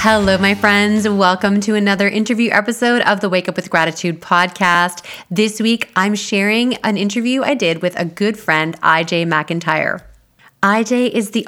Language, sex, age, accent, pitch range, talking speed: English, female, 30-49, American, 170-225 Hz, 165 wpm